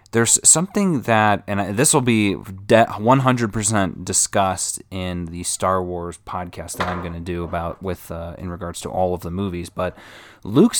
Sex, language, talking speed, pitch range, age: male, English, 170 wpm, 90-115 Hz, 20-39